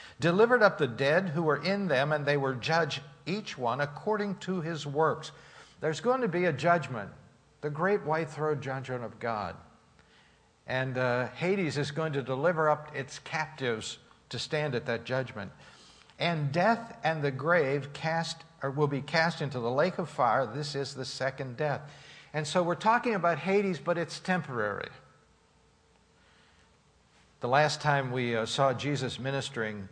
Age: 60-79